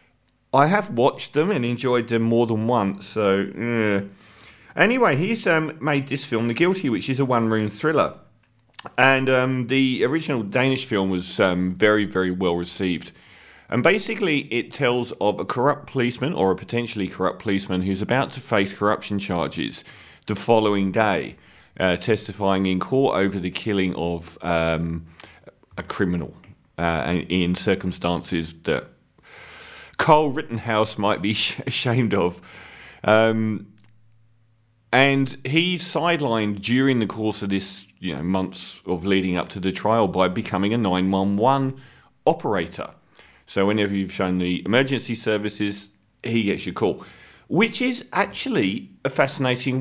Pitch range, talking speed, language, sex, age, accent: 95-130 Hz, 145 wpm, English, male, 40-59, British